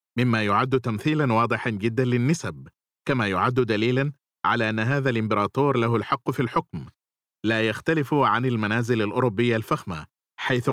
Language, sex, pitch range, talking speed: Arabic, male, 115-140 Hz, 135 wpm